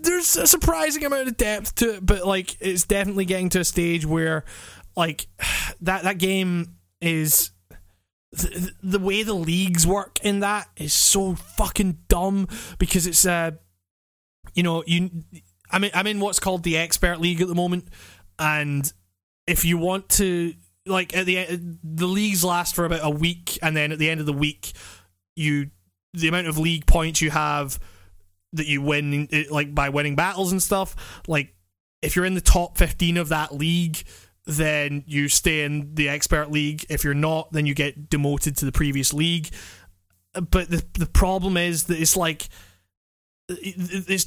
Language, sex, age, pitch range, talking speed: English, male, 20-39, 145-185 Hz, 175 wpm